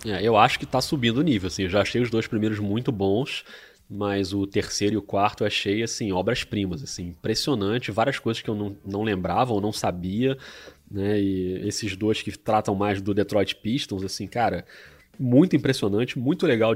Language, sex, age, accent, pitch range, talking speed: Portuguese, male, 20-39, Brazilian, 100-130 Hz, 200 wpm